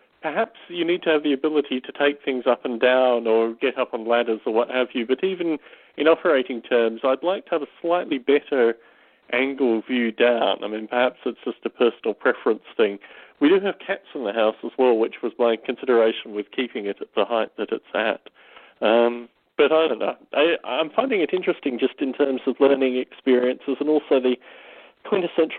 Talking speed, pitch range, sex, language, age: 205 wpm, 115-150 Hz, male, English, 40-59